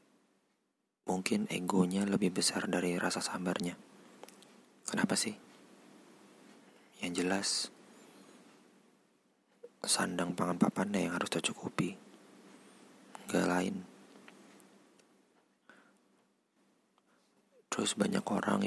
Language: Indonesian